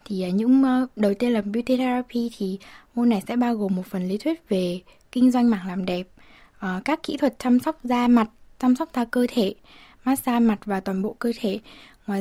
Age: 10-29